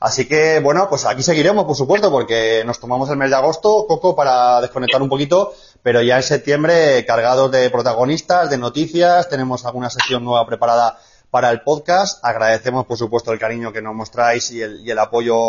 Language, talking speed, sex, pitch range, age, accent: Spanish, 195 wpm, male, 115-130 Hz, 20-39, Spanish